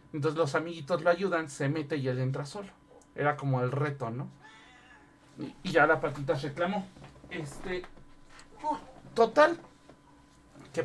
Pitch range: 145-180 Hz